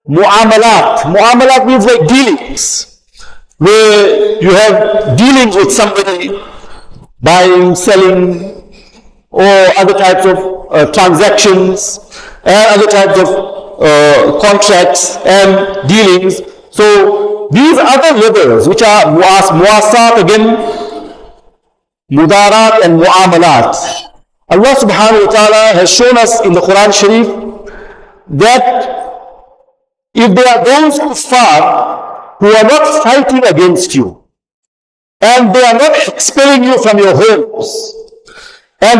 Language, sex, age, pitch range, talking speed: English, male, 50-69, 195-260 Hz, 110 wpm